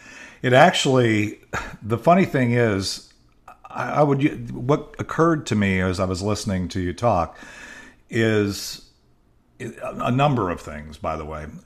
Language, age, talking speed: English, 50-69, 145 wpm